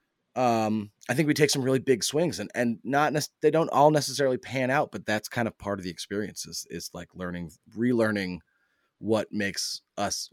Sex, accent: male, American